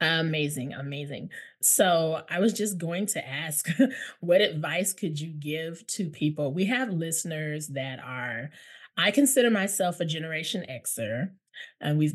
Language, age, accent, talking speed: English, 20-39, American, 145 wpm